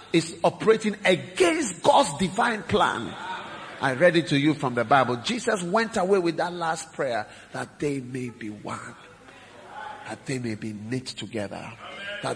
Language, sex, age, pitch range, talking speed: English, male, 50-69, 115-165 Hz, 160 wpm